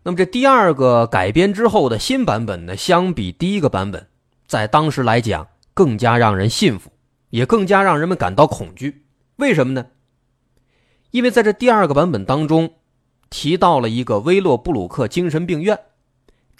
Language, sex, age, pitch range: Chinese, male, 30-49, 115-160 Hz